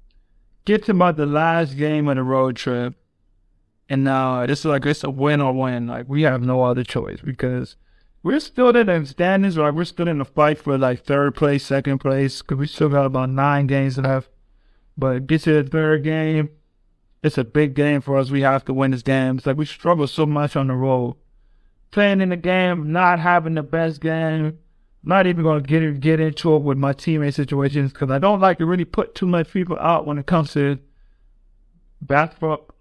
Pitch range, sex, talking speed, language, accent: 130-165 Hz, male, 215 wpm, English, American